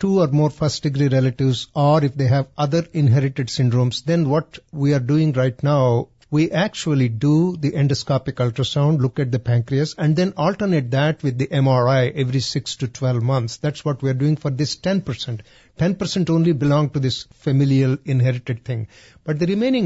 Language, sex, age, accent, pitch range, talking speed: English, male, 60-79, Indian, 130-160 Hz, 180 wpm